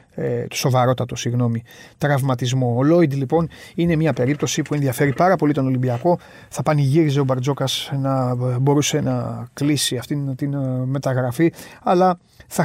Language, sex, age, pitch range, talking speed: Greek, male, 30-49, 120-145 Hz, 135 wpm